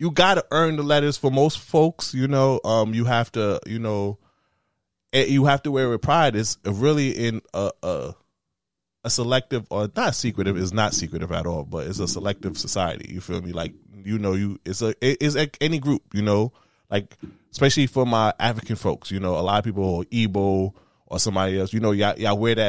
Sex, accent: male, American